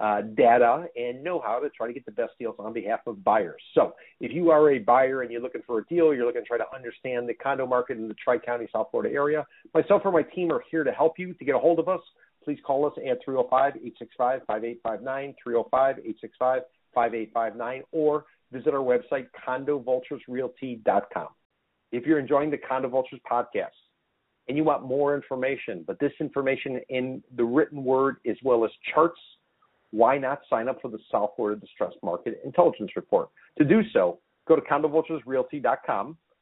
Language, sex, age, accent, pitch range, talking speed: English, male, 50-69, American, 125-150 Hz, 180 wpm